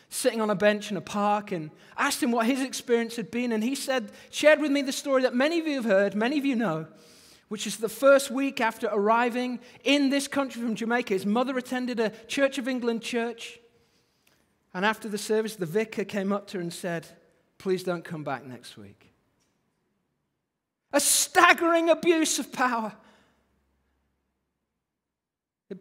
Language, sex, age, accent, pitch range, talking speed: English, male, 40-59, British, 185-260 Hz, 180 wpm